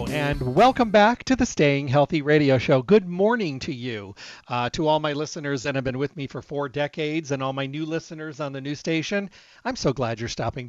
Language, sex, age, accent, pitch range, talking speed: English, male, 40-59, American, 130-160 Hz, 225 wpm